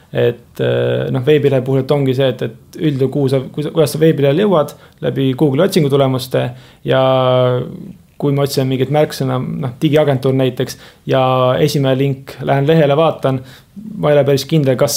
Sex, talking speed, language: male, 150 wpm, English